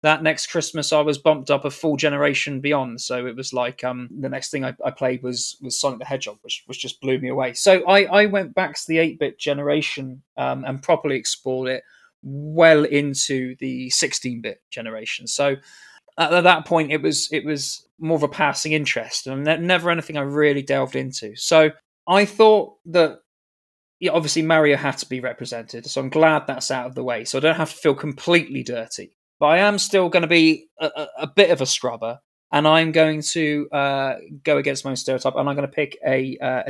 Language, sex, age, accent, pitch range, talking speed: English, male, 20-39, British, 135-165 Hz, 215 wpm